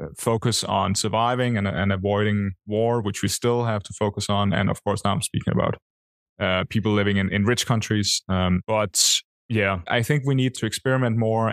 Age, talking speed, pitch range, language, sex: 20-39, 200 wpm, 100-115 Hz, English, male